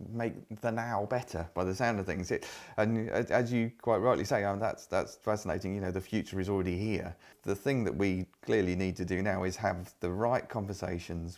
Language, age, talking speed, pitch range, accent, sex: English, 30-49, 230 wpm, 95-120 Hz, British, male